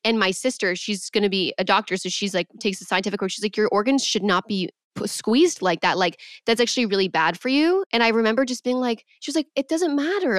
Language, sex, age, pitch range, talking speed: English, female, 20-39, 185-250 Hz, 260 wpm